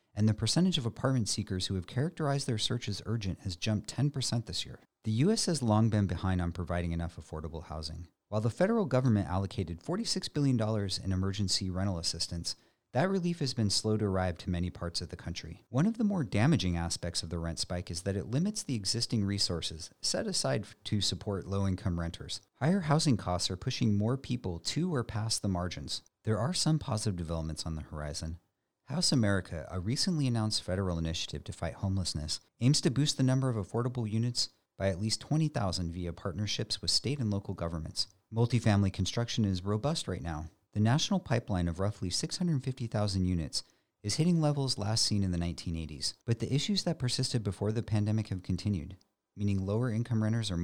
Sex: male